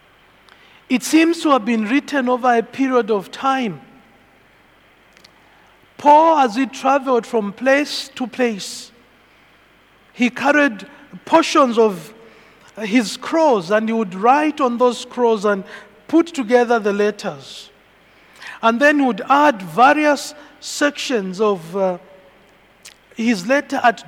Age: 50-69